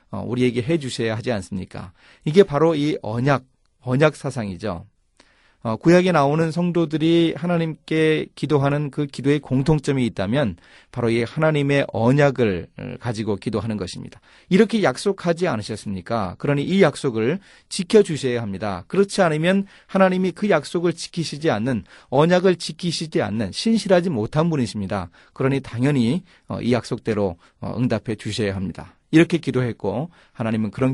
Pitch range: 110-160 Hz